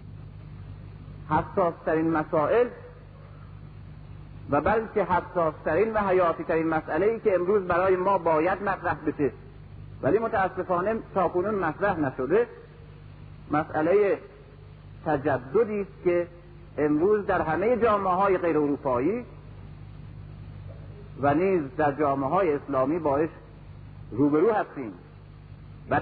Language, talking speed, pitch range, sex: Persian, 95 wpm, 150-210 Hz, male